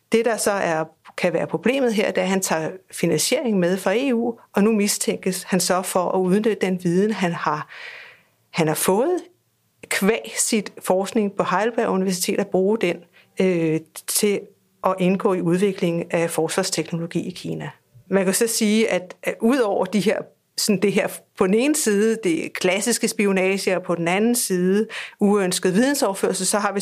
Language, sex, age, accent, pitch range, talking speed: Danish, female, 60-79, native, 175-210 Hz, 170 wpm